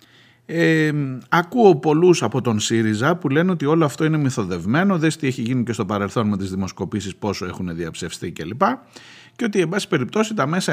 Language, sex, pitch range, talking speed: Greek, male, 120-190 Hz, 195 wpm